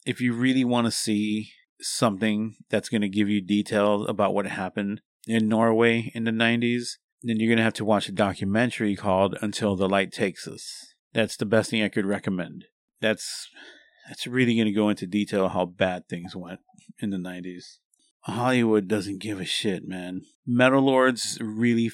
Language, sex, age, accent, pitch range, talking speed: English, male, 30-49, American, 100-120 Hz, 185 wpm